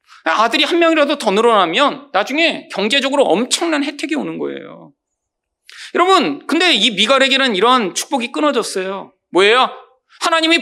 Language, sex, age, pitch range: Korean, male, 40-59, 180-270 Hz